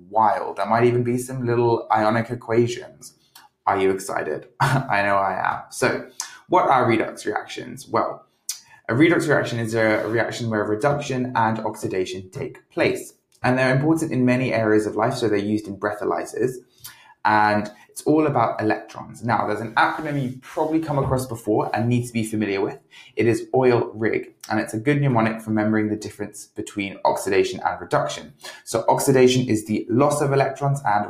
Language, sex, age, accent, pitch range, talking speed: English, male, 20-39, British, 105-130 Hz, 180 wpm